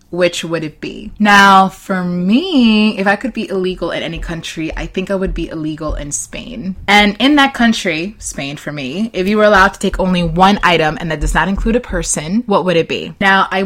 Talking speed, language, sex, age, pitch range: 230 wpm, English, female, 20-39, 160-215 Hz